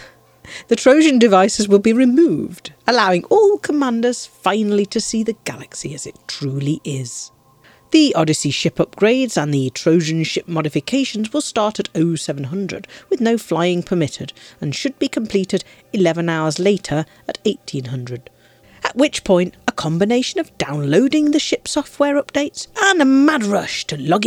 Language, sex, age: English, female, 40-59